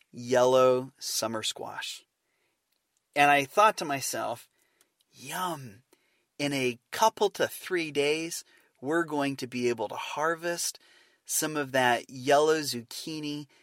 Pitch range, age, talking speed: 125-180 Hz, 30-49, 120 wpm